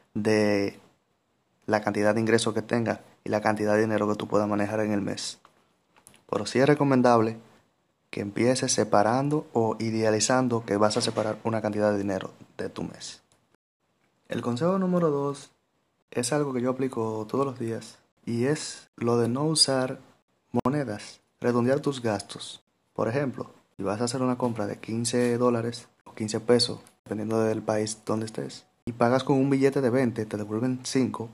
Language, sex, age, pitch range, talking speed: Spanish, male, 30-49, 105-130 Hz, 170 wpm